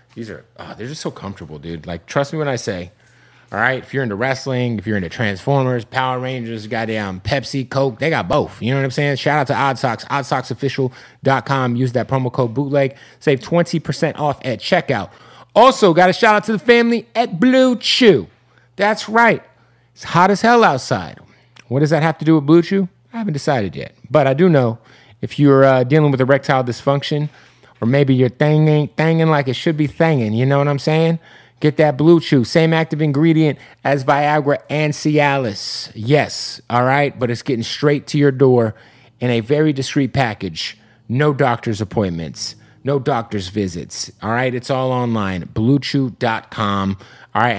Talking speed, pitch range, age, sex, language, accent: 190 wpm, 115-150 Hz, 30-49, male, English, American